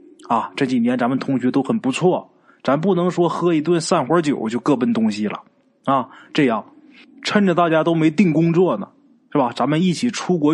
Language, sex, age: Chinese, male, 20-39